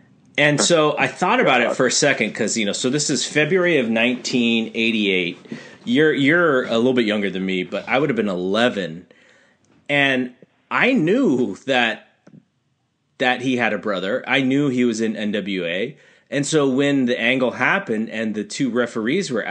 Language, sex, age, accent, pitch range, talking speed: English, male, 30-49, American, 100-130 Hz, 180 wpm